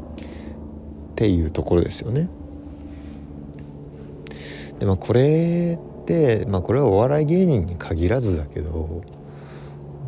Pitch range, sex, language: 70-95 Hz, male, Japanese